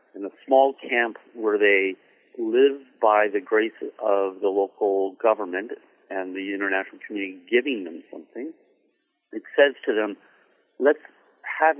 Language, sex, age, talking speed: English, male, 50-69, 135 wpm